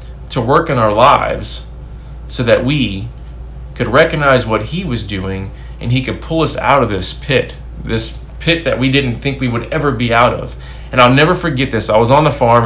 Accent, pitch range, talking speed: American, 105-135 Hz, 215 wpm